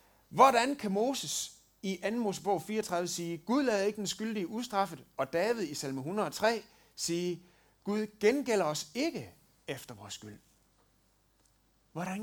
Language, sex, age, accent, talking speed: Danish, male, 60-79, native, 135 wpm